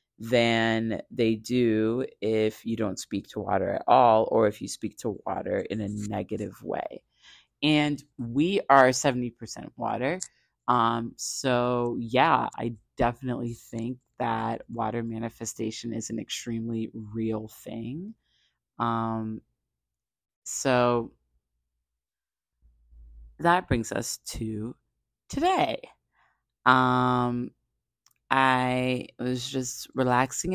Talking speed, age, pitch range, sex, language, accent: 100 wpm, 30-49, 110-135 Hz, female, English, American